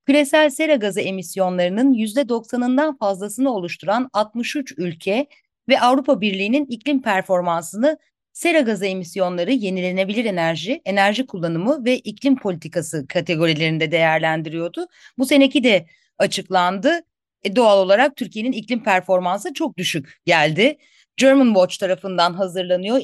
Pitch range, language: 185-265 Hz, Turkish